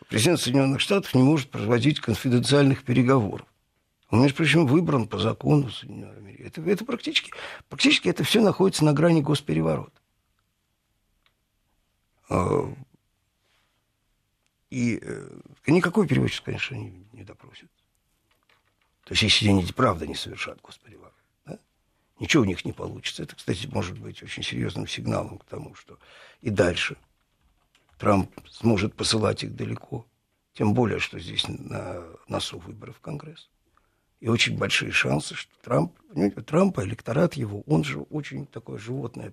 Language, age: Russian, 60-79